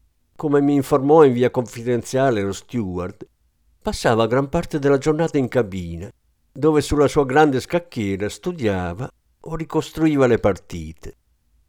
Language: Italian